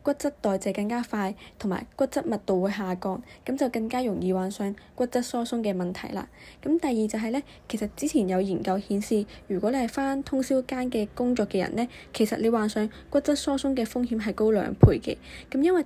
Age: 10-29